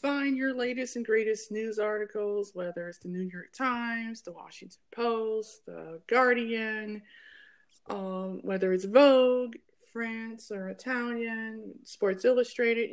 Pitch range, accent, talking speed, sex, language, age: 210-250 Hz, American, 125 wpm, female, English, 30-49